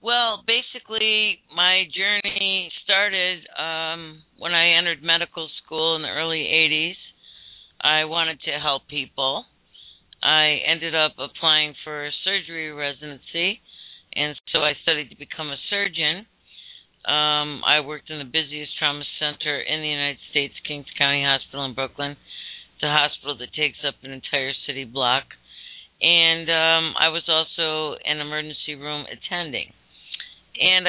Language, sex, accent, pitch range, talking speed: English, female, American, 145-165 Hz, 140 wpm